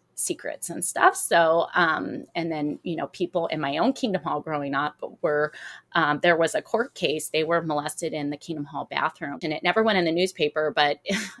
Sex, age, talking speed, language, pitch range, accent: female, 30-49, 210 wpm, English, 165-265 Hz, American